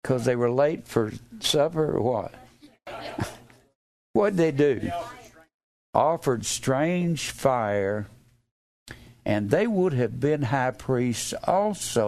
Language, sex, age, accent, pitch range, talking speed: English, male, 60-79, American, 115-160 Hz, 110 wpm